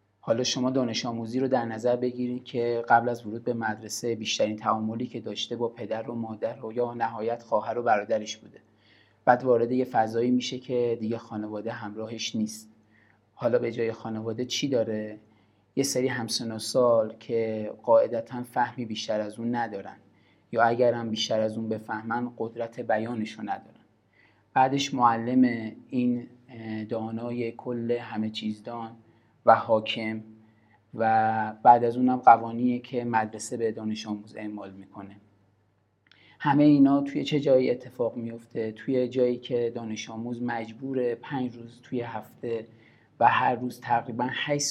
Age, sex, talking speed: 30-49, male, 145 wpm